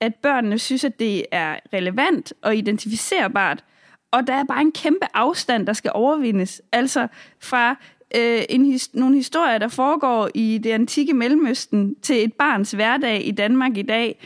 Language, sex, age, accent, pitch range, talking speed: Danish, female, 20-39, native, 205-260 Hz, 170 wpm